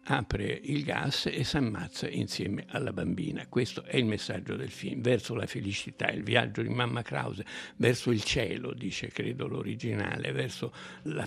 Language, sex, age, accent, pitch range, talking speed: Italian, male, 60-79, native, 100-120 Hz, 165 wpm